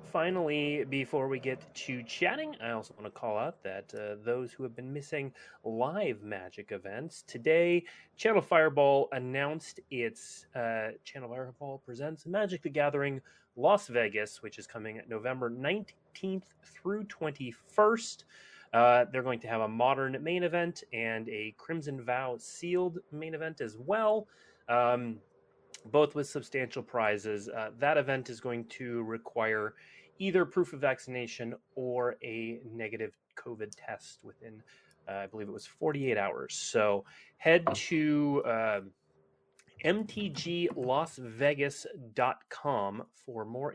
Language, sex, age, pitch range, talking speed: English, male, 30-49, 115-160 Hz, 135 wpm